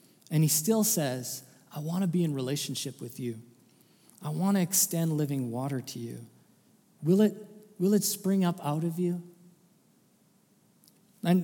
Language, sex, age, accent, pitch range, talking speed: English, male, 40-59, American, 150-195 Hz, 150 wpm